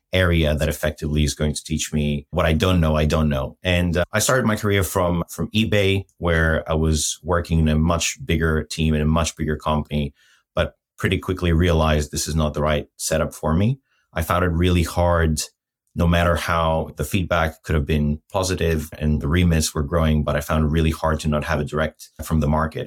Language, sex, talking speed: English, male, 220 wpm